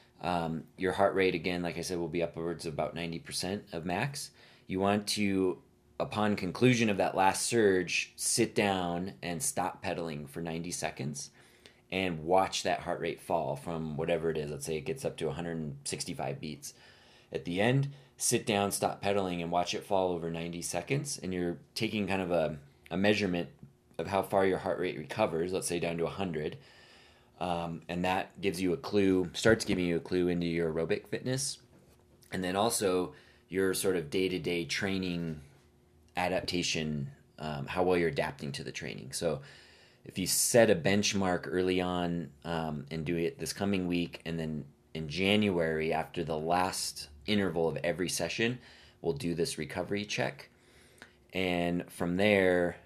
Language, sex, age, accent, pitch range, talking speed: English, male, 20-39, American, 85-95 Hz, 175 wpm